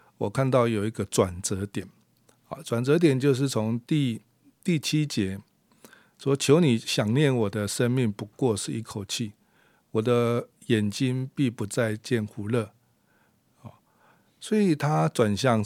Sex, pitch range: male, 105-130 Hz